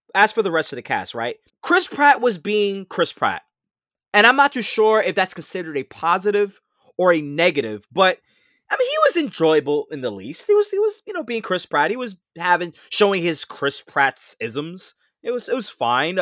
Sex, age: male, 20-39